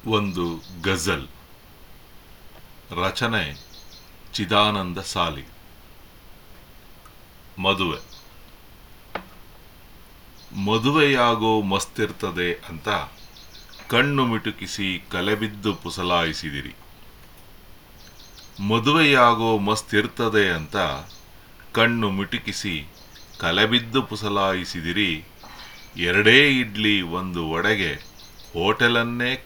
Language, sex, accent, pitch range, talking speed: Kannada, male, native, 90-115 Hz, 50 wpm